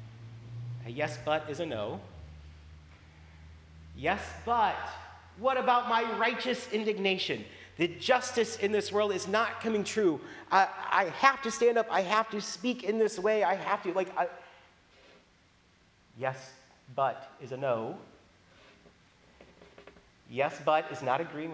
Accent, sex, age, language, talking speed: American, male, 40-59, English, 135 wpm